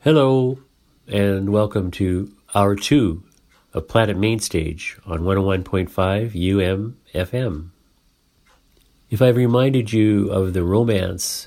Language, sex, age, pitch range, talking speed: English, male, 50-69, 90-110 Hz, 100 wpm